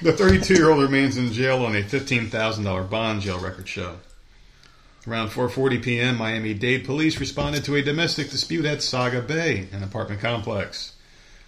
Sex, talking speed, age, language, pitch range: male, 145 wpm, 40-59, English, 110-140 Hz